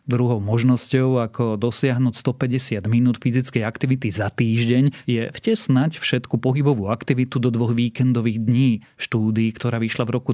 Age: 30-49